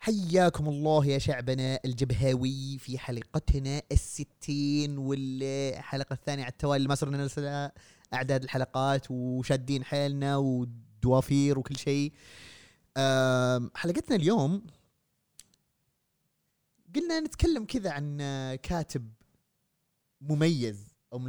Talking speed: 95 wpm